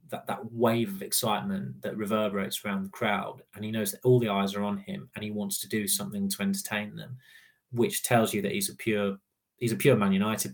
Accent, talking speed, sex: British, 235 wpm, male